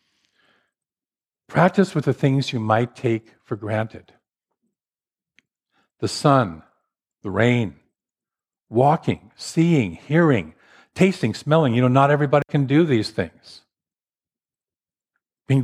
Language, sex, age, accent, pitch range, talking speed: English, male, 50-69, American, 100-125 Hz, 105 wpm